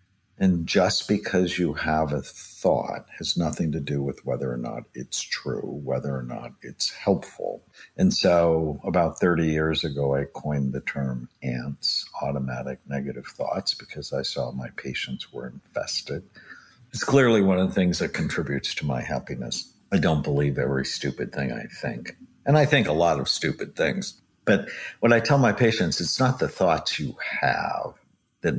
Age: 60-79